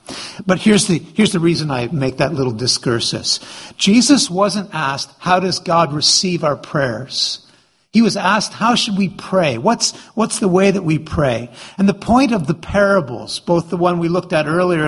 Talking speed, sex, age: 190 wpm, male, 50-69